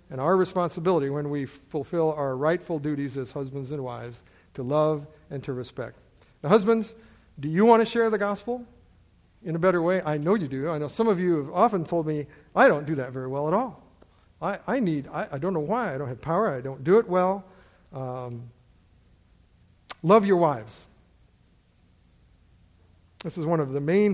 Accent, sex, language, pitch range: American, male, English, 140-190 Hz